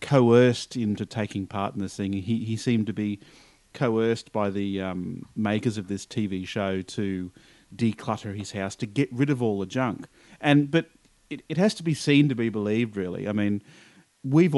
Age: 40-59